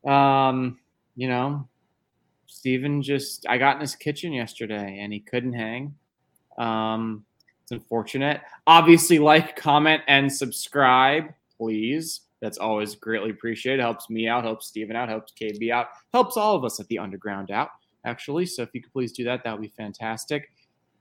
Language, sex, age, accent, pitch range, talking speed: English, male, 20-39, American, 120-170 Hz, 165 wpm